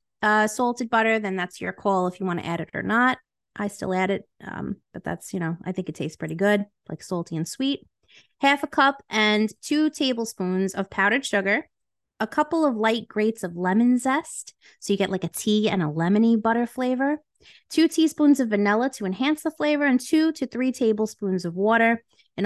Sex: female